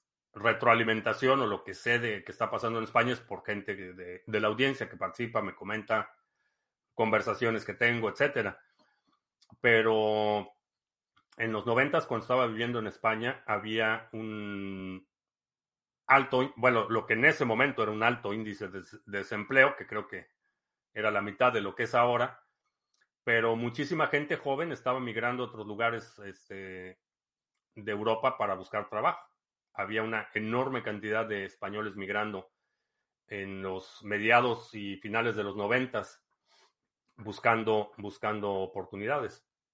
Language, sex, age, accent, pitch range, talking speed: Spanish, male, 40-59, Mexican, 105-120 Hz, 140 wpm